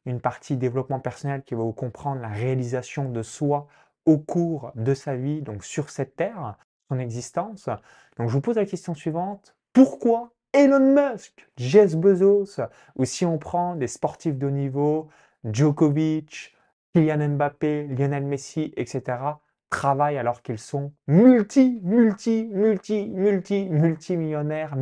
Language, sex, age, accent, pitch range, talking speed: French, male, 20-39, French, 130-175 Hz, 145 wpm